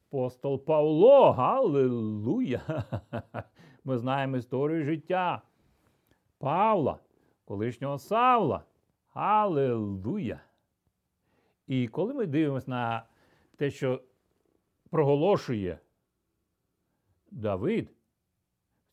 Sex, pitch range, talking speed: male, 115-165 Hz, 65 wpm